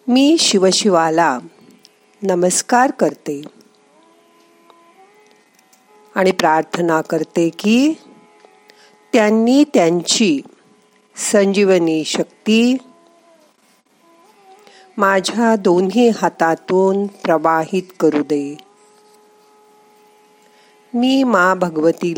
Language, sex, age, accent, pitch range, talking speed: Marathi, female, 50-69, native, 185-280 Hz, 45 wpm